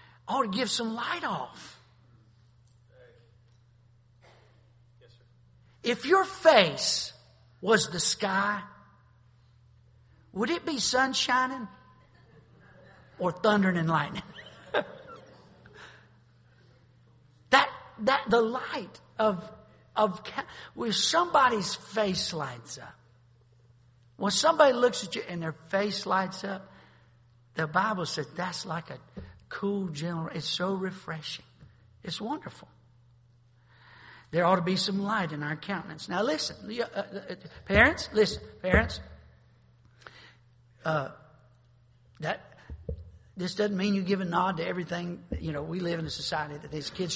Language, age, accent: English, 60-79, American